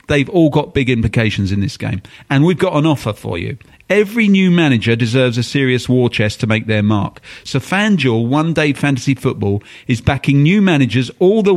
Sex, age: male, 40-59